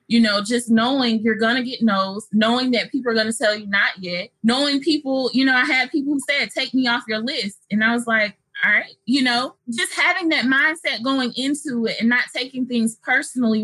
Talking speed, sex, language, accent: 235 wpm, female, English, American